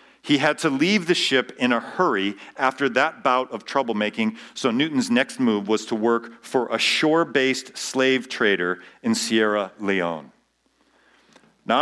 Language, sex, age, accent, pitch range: Japanese, male, 40-59, American, 120-165 Hz